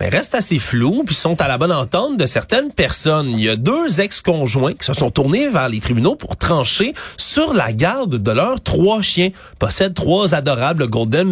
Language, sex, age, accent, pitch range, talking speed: French, male, 30-49, Canadian, 125-185 Hz, 205 wpm